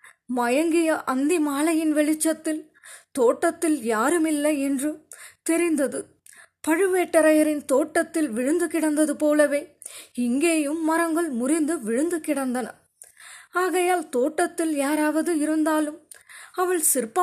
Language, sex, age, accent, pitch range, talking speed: Tamil, female, 20-39, native, 290-335 Hz, 85 wpm